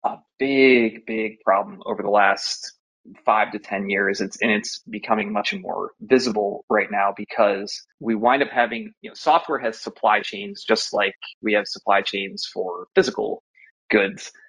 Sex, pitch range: male, 110-135 Hz